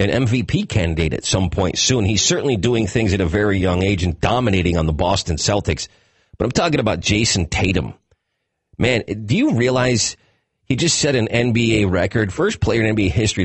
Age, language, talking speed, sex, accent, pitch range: 40-59, English, 190 wpm, male, American, 95-115 Hz